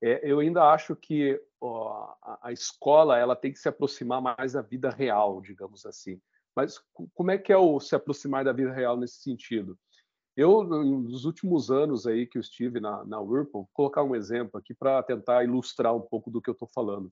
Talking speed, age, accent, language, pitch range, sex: 195 wpm, 50-69, Brazilian, Portuguese, 120-175 Hz, male